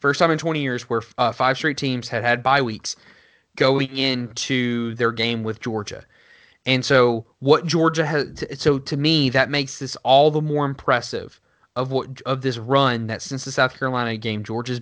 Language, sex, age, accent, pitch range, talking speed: English, male, 20-39, American, 120-145 Hz, 190 wpm